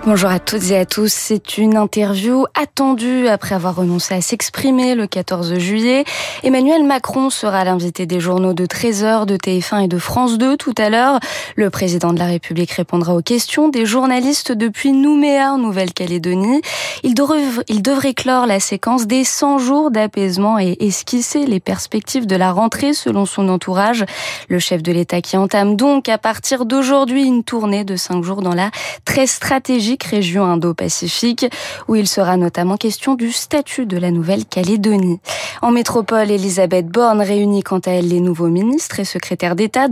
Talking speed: 170 wpm